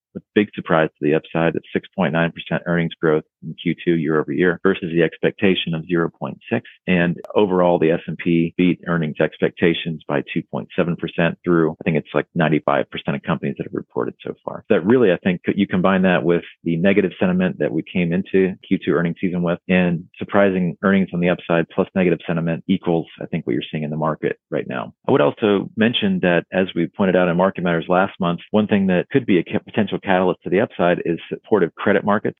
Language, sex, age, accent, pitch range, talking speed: English, male, 40-59, American, 80-90 Hz, 205 wpm